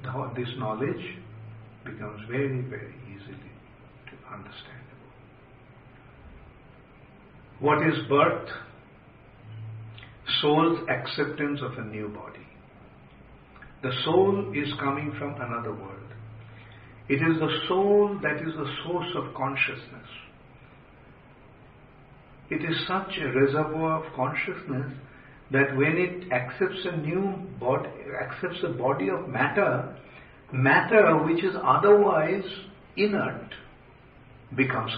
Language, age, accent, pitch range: English, 50-69, Indian, 120-145 Hz